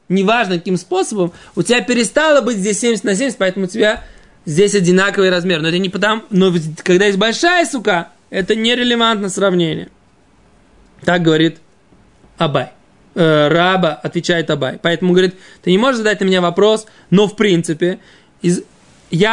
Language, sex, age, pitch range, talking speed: Russian, male, 20-39, 170-215 Hz, 155 wpm